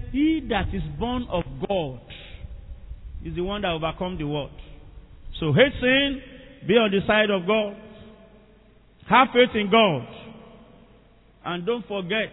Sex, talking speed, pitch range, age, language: male, 140 wpm, 180-240 Hz, 50-69, English